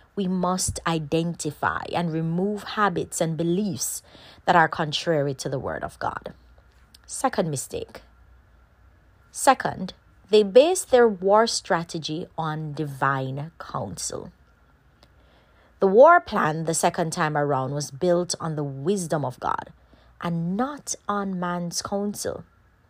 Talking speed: 120 wpm